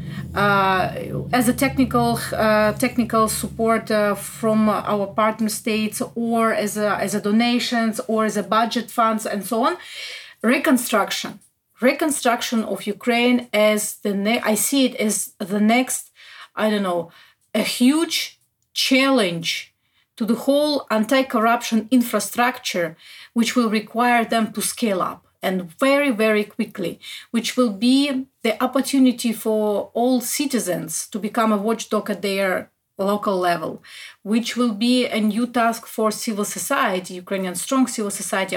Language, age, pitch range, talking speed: Ukrainian, 30-49, 205-250 Hz, 140 wpm